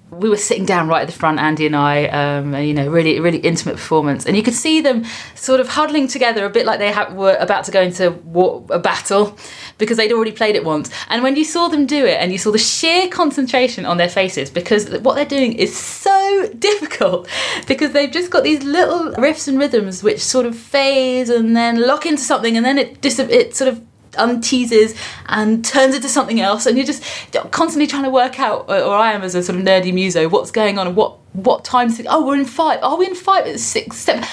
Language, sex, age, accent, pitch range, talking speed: English, female, 20-39, British, 180-265 Hz, 230 wpm